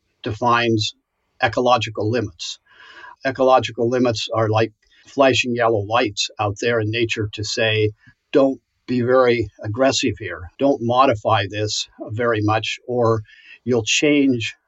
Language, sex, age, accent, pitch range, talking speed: English, male, 50-69, American, 110-125 Hz, 120 wpm